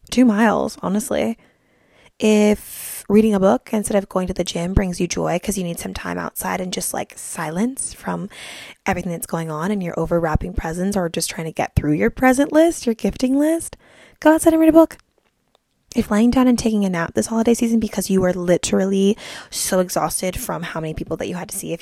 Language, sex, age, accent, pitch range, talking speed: English, female, 20-39, American, 185-255 Hz, 220 wpm